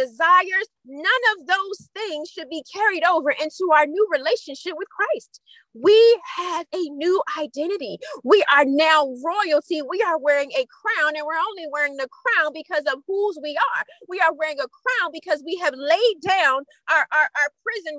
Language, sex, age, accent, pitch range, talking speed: English, female, 30-49, American, 290-375 Hz, 180 wpm